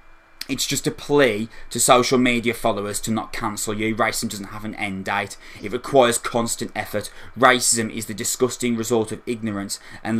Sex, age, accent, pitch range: male, 20-39, British, 100-120 Hz